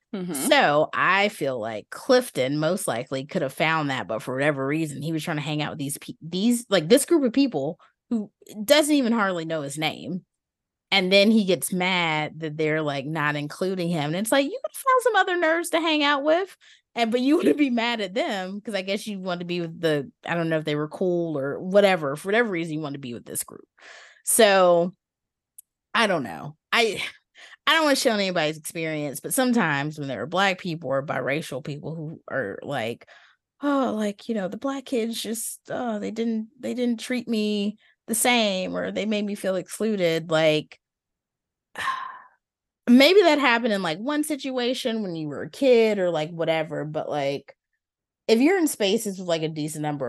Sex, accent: female, American